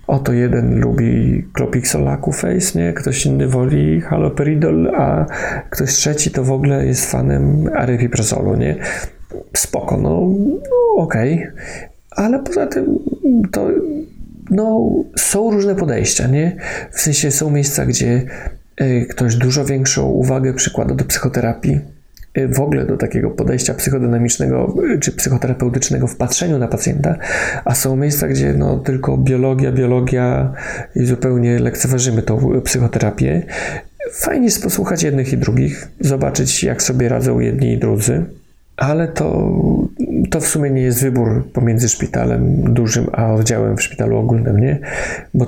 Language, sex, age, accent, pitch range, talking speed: Polish, male, 40-59, native, 115-140 Hz, 135 wpm